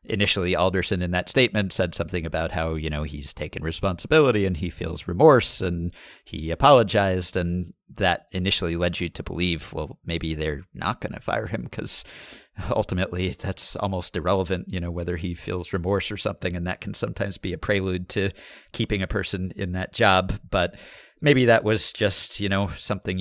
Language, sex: English, male